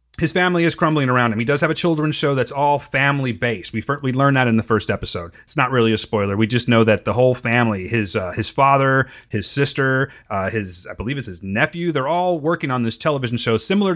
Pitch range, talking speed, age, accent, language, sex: 110-160 Hz, 245 wpm, 30-49, American, English, male